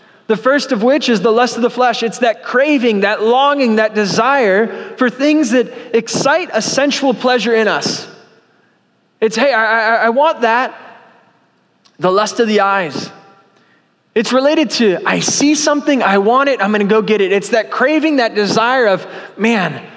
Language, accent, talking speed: English, American, 175 wpm